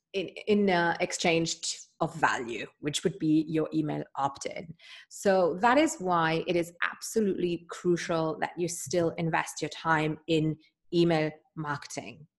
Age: 30-49